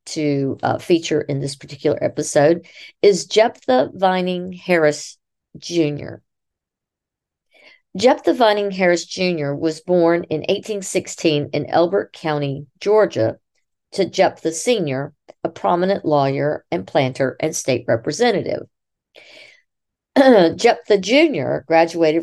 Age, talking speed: 50-69, 105 wpm